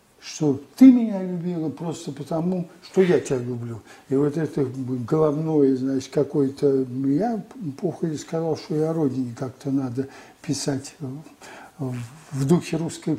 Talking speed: 130 wpm